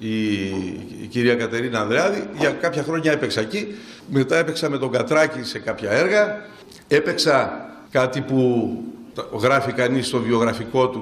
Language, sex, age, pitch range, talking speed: Greek, male, 50-69, 115-140 Hz, 135 wpm